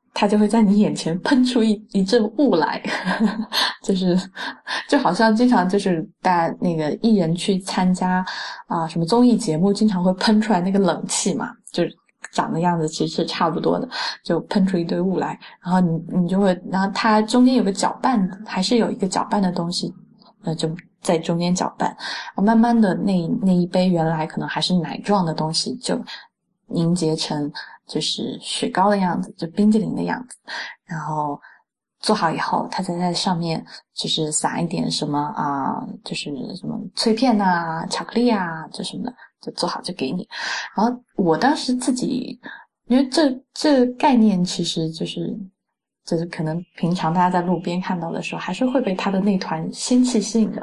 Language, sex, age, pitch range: Chinese, female, 20-39, 175-230 Hz